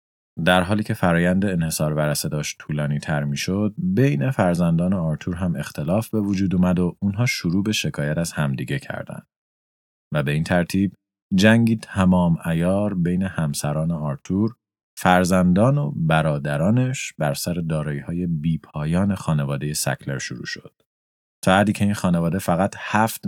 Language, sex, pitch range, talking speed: Persian, male, 75-100 Hz, 135 wpm